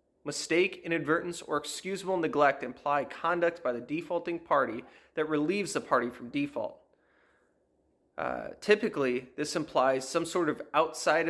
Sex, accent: male, American